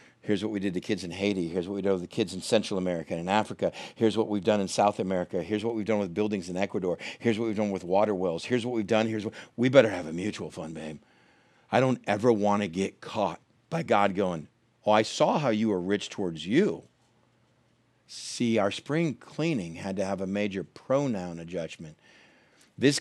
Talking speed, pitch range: 225 wpm, 90-110 Hz